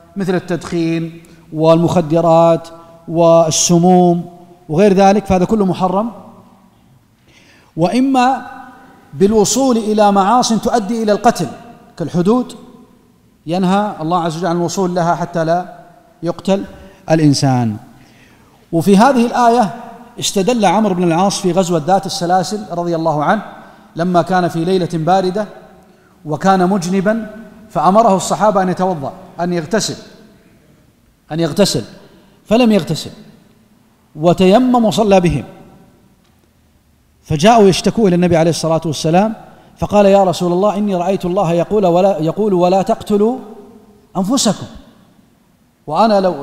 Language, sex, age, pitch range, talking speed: Arabic, male, 40-59, 165-205 Hz, 110 wpm